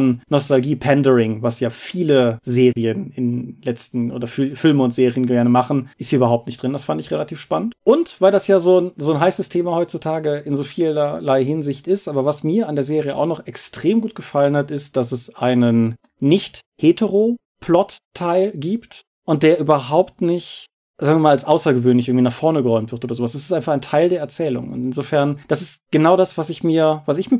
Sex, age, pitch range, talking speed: male, 30-49, 130-165 Hz, 200 wpm